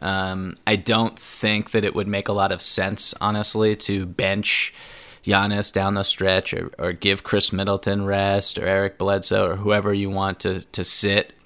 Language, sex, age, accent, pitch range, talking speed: English, male, 20-39, American, 95-110 Hz, 185 wpm